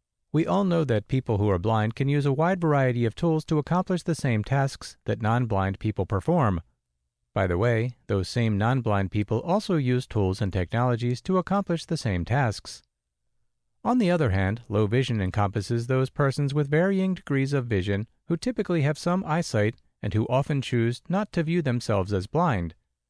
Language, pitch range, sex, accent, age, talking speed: English, 105-155 Hz, male, American, 40-59, 180 wpm